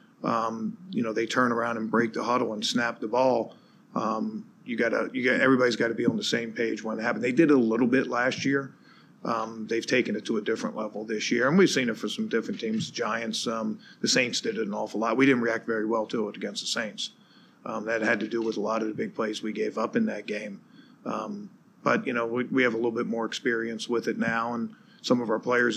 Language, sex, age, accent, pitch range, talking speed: English, male, 50-69, American, 110-135 Hz, 265 wpm